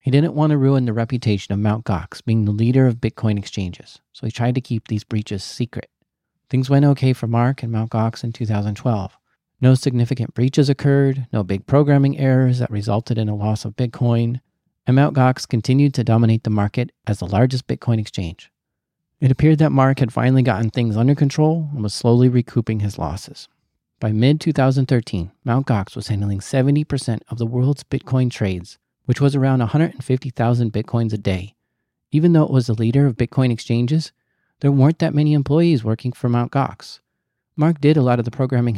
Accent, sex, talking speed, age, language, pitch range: American, male, 190 wpm, 40-59, English, 115-135 Hz